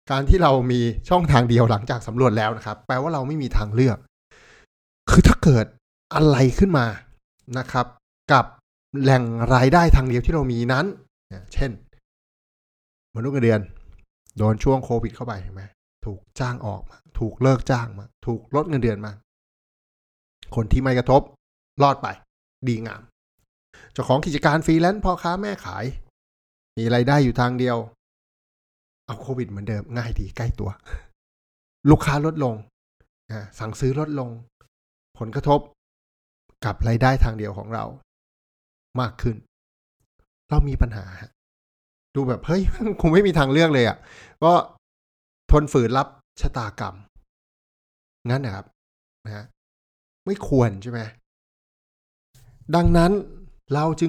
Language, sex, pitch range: Thai, male, 105-140 Hz